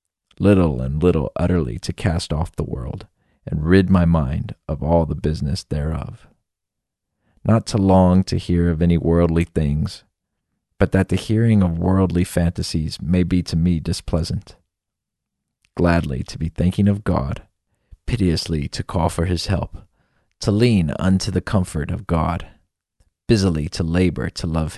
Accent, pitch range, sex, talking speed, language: American, 80-100 Hz, male, 155 wpm, English